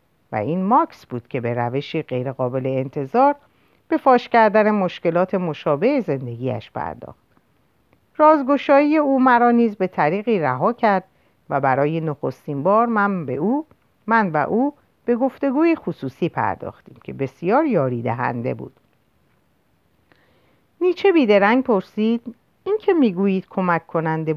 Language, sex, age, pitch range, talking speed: Persian, female, 50-69, 140-230 Hz, 120 wpm